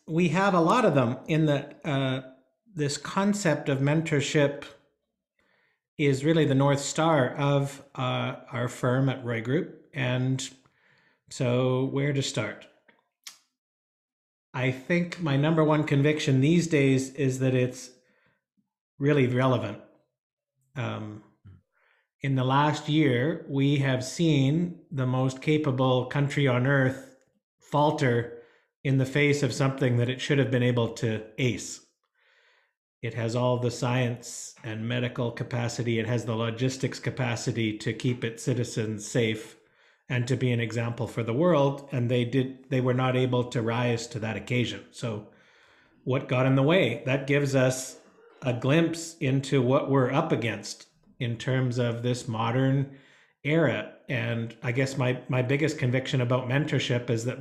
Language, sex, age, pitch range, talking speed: English, male, 50-69, 125-145 Hz, 150 wpm